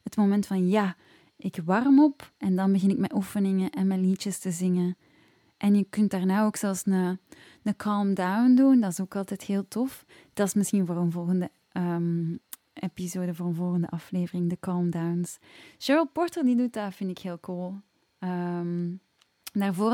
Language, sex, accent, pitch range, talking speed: Dutch, female, Dutch, 180-215 Hz, 185 wpm